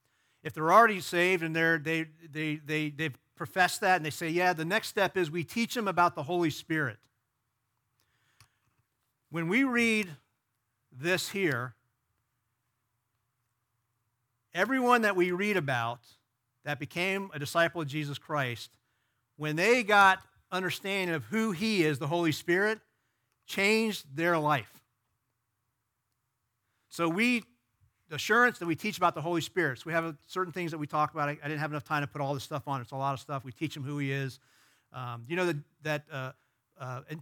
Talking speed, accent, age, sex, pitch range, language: 175 wpm, American, 40-59, male, 120-170 Hz, English